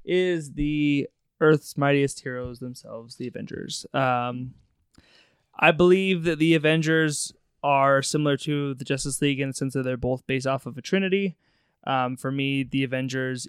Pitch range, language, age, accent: 125-155 Hz, English, 20-39, American